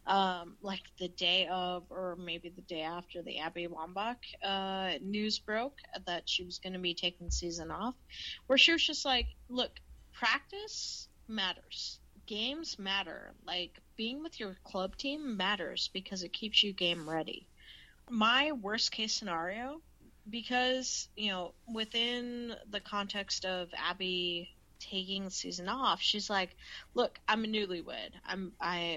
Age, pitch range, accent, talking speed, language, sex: 30-49, 175-225 Hz, American, 145 wpm, English, female